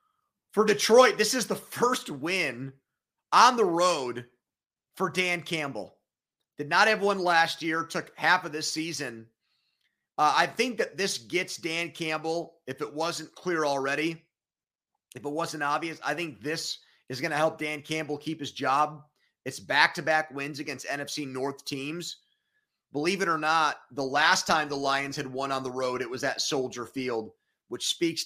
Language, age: English, 30-49